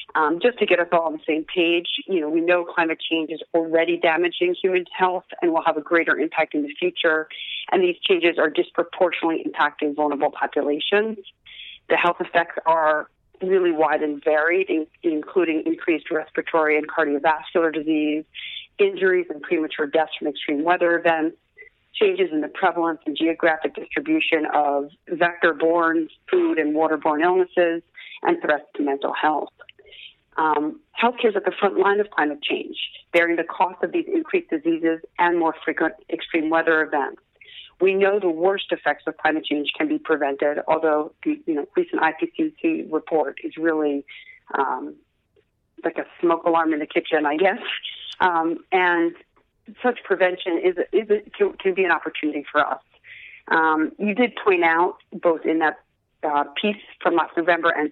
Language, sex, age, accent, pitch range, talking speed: English, female, 30-49, American, 155-205 Hz, 165 wpm